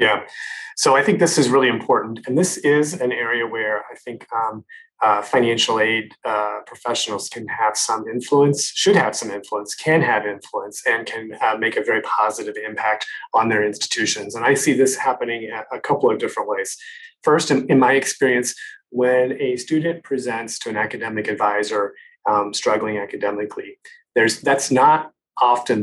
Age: 30-49